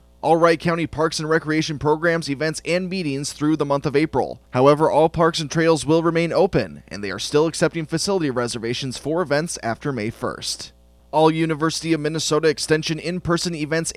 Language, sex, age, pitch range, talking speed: English, male, 20-39, 125-160 Hz, 180 wpm